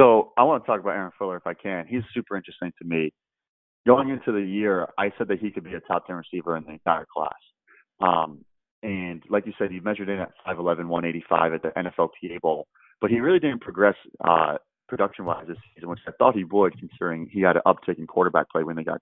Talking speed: 235 wpm